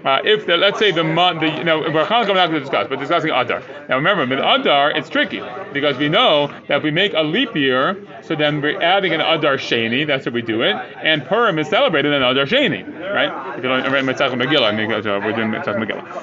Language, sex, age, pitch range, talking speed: English, male, 30-49, 150-205 Hz, 205 wpm